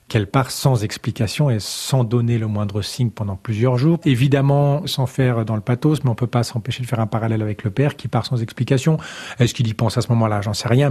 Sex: male